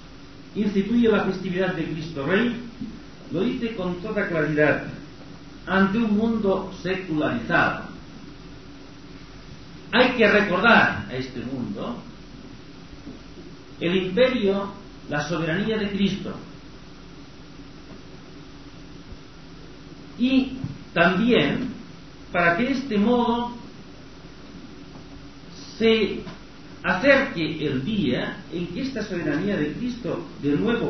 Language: Spanish